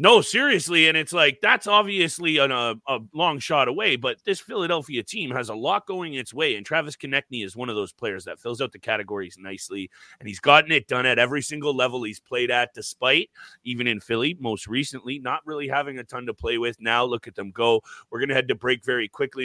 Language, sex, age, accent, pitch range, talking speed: English, male, 30-49, American, 125-155 Hz, 230 wpm